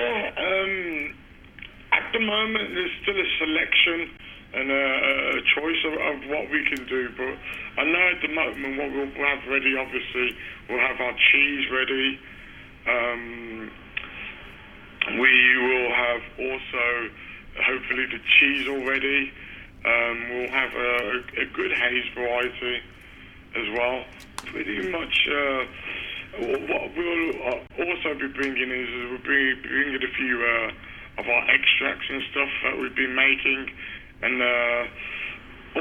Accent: British